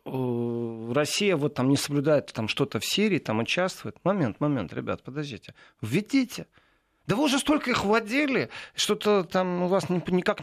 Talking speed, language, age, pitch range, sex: 150 wpm, Russian, 40-59, 130-185 Hz, male